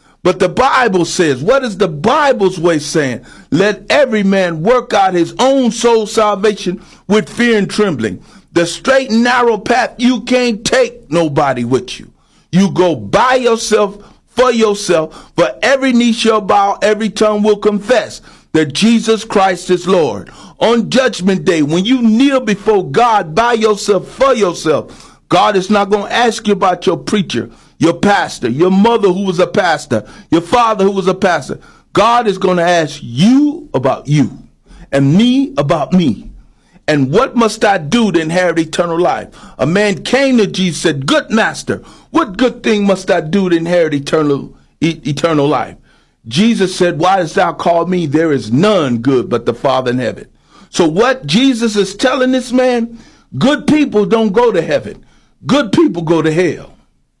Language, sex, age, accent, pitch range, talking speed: English, male, 50-69, American, 175-235 Hz, 175 wpm